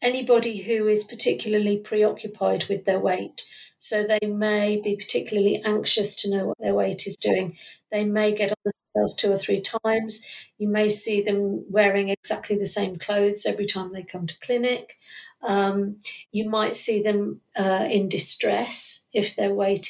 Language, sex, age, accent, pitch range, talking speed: English, female, 50-69, British, 205-235 Hz, 170 wpm